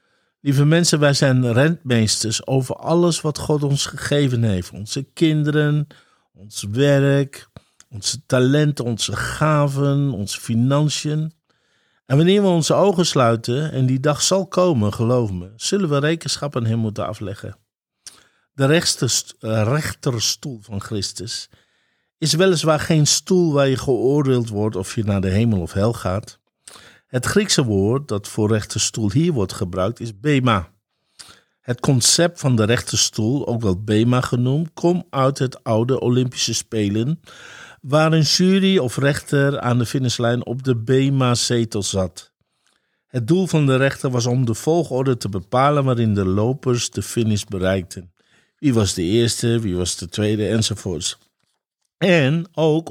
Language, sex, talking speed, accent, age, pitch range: Dutch, male, 145 wpm, Dutch, 50-69, 110-145 Hz